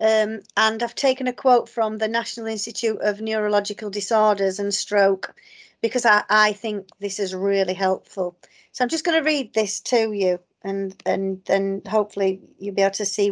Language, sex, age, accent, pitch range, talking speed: English, female, 40-59, British, 200-250 Hz, 185 wpm